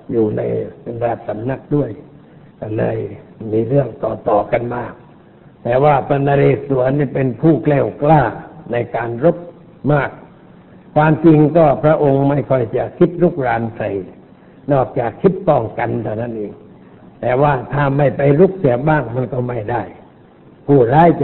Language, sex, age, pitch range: Thai, male, 60-79, 120-150 Hz